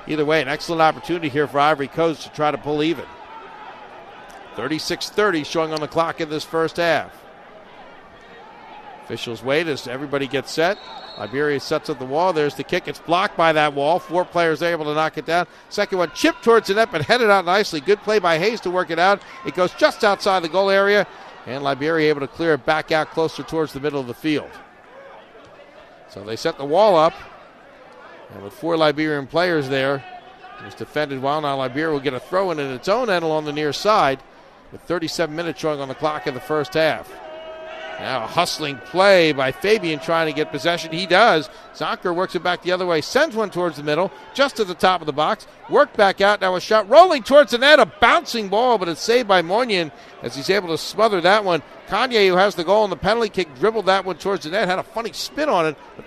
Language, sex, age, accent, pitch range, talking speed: English, male, 50-69, American, 150-200 Hz, 225 wpm